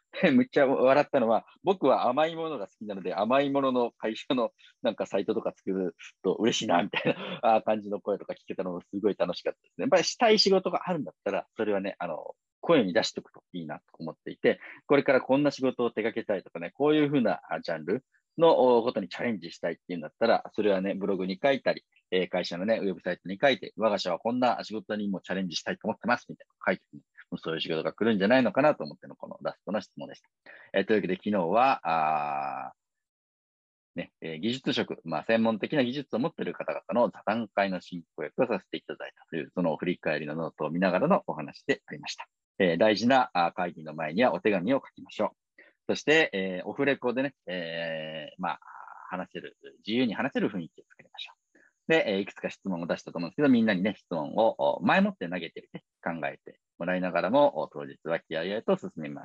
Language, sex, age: Japanese, male, 40-59